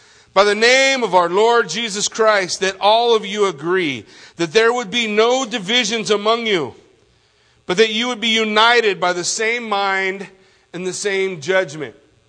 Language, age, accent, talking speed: English, 50-69, American, 170 wpm